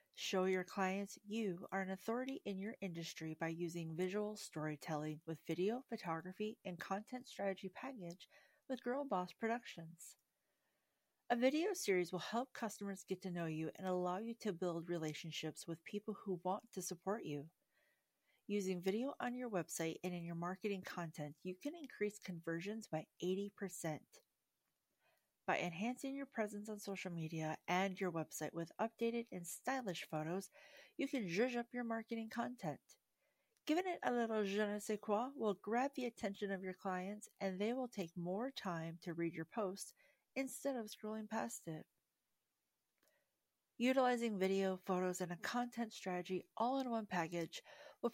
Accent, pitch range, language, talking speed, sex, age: American, 175-230 Hz, English, 160 wpm, female, 40-59